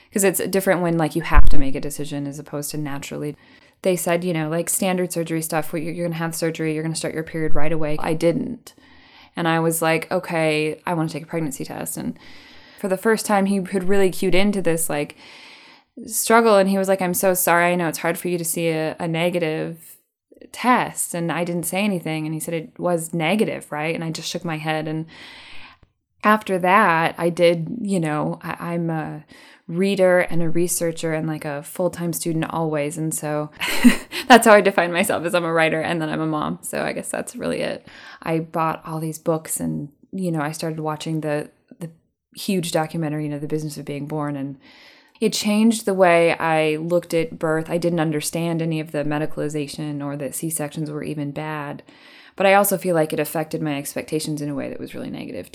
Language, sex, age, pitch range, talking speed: English, female, 20-39, 155-180 Hz, 220 wpm